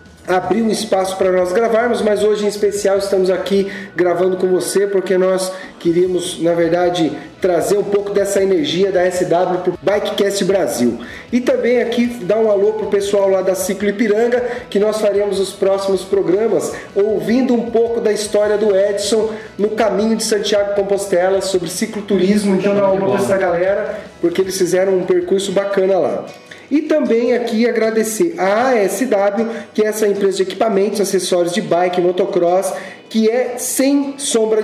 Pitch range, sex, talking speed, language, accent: 190-220 Hz, male, 170 wpm, Portuguese, Brazilian